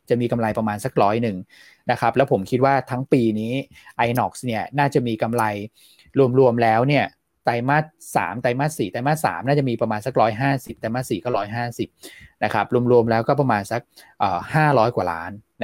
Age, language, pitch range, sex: 20-39, Thai, 110-145 Hz, male